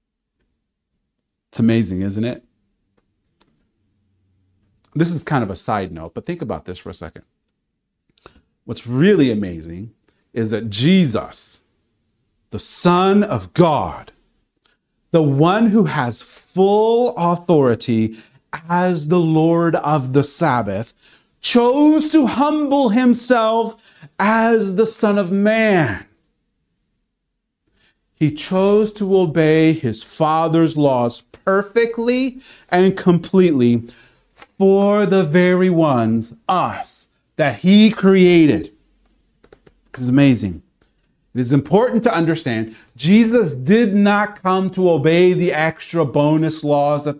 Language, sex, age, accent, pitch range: Japanese, male, 40-59, American, 125-205 Hz